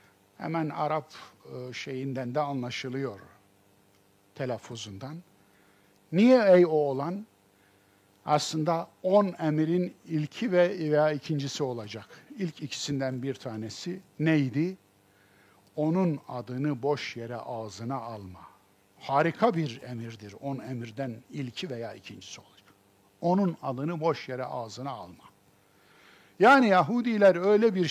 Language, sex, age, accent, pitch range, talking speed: Turkish, male, 50-69, native, 115-180 Hz, 100 wpm